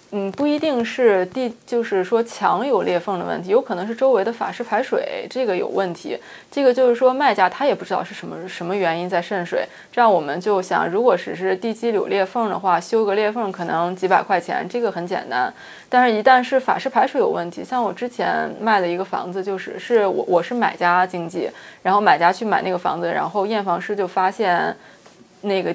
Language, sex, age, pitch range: Chinese, female, 20-39, 190-235 Hz